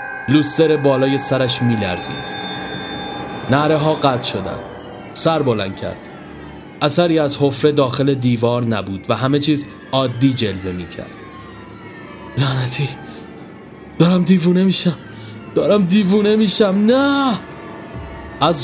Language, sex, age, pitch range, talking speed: Persian, male, 30-49, 120-155 Hz, 115 wpm